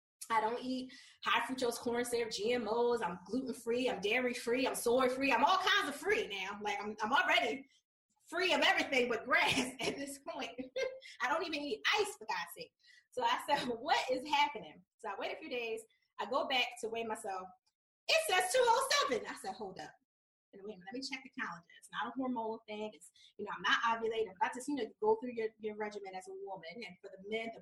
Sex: female